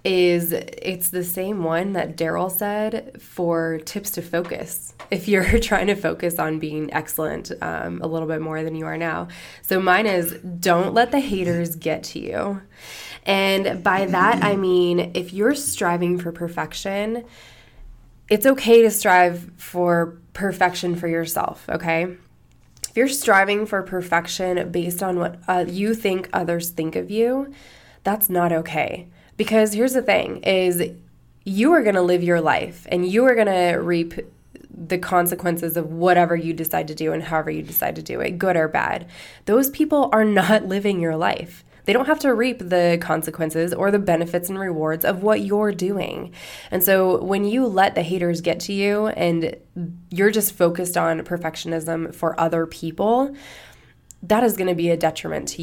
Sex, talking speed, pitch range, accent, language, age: female, 175 wpm, 165-205 Hz, American, English, 20-39